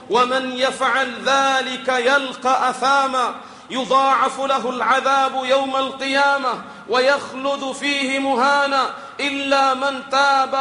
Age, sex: 40-59, male